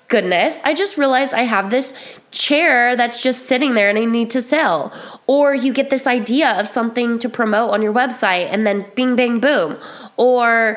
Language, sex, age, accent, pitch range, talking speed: English, female, 20-39, American, 190-255 Hz, 195 wpm